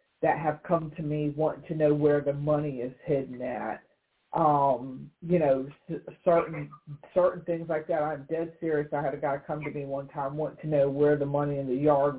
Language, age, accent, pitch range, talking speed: English, 40-59, American, 145-165 Hz, 210 wpm